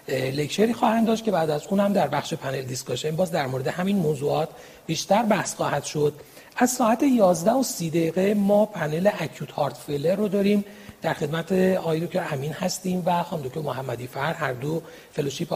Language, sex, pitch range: Persian, male, 150-195 Hz